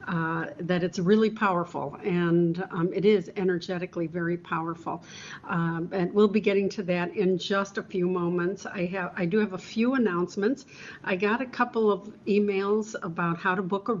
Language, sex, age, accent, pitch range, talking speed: English, female, 60-79, American, 175-200 Hz, 185 wpm